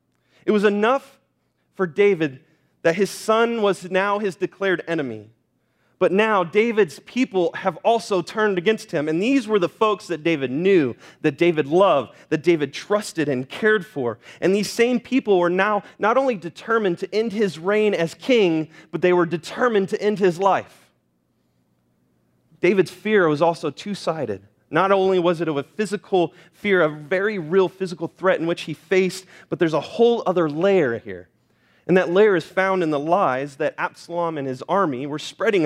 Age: 30-49